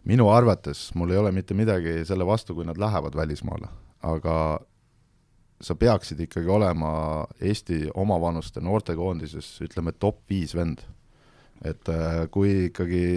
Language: English